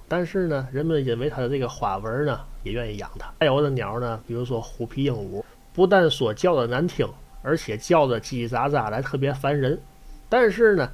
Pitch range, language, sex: 115-145 Hz, Chinese, male